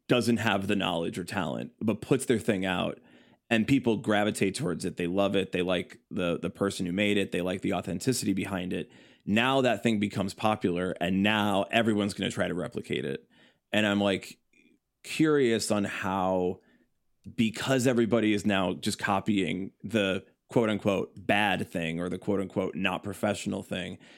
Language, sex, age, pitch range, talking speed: English, male, 20-39, 95-115 Hz, 175 wpm